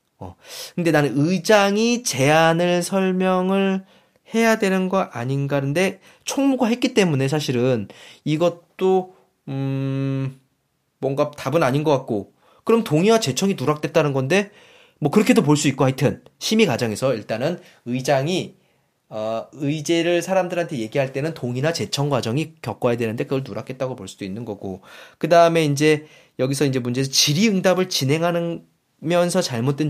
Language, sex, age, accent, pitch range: Korean, male, 20-39, native, 130-185 Hz